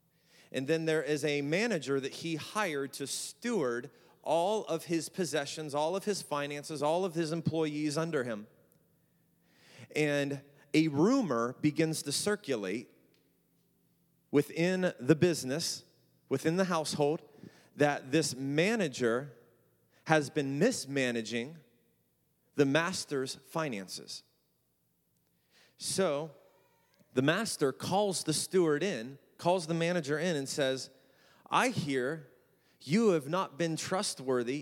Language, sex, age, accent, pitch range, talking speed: English, male, 40-59, American, 140-175 Hz, 115 wpm